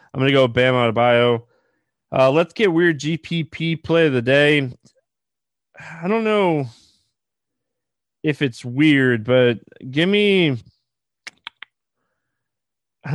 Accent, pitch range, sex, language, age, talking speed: American, 120-145 Hz, male, English, 20-39, 120 wpm